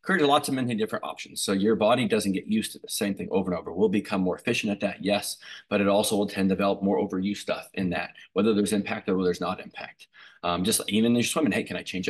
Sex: male